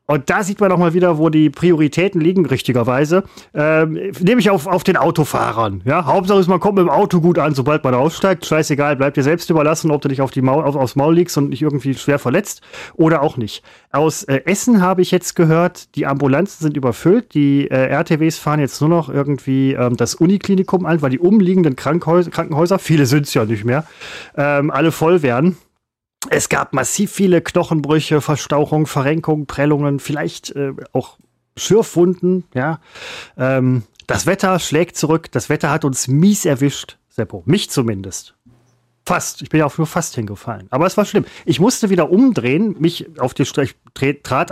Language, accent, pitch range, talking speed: German, German, 135-170 Hz, 180 wpm